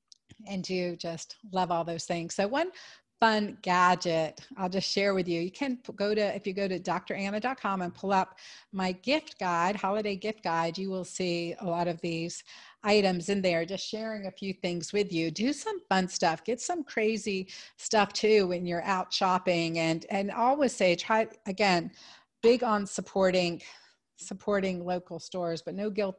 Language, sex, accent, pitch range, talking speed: English, female, American, 180-220 Hz, 180 wpm